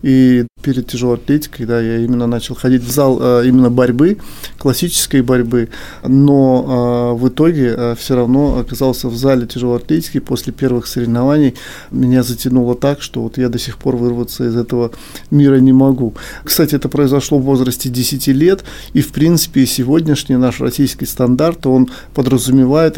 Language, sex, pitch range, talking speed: Russian, male, 120-140 Hz, 155 wpm